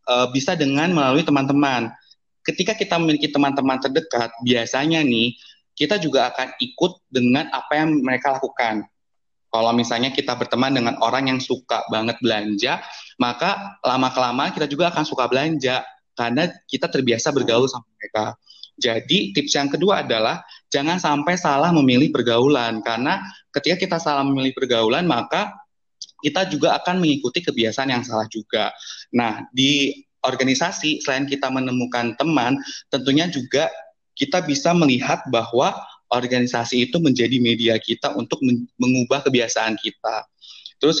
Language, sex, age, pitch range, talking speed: Indonesian, male, 20-39, 120-150 Hz, 135 wpm